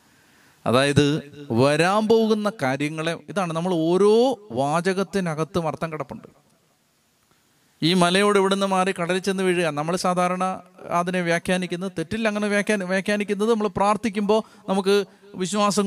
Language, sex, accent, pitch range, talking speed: Malayalam, male, native, 150-195 Hz, 115 wpm